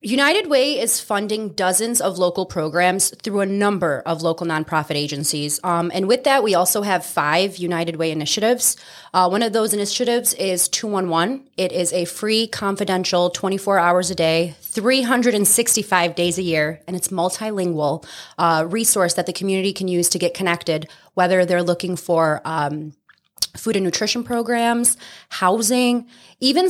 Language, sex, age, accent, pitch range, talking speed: English, female, 20-39, American, 170-215 Hz, 170 wpm